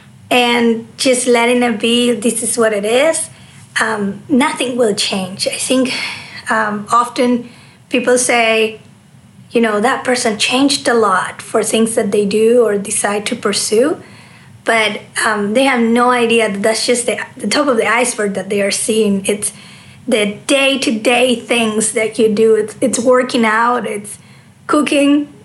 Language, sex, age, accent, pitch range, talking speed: English, female, 30-49, American, 215-255 Hz, 160 wpm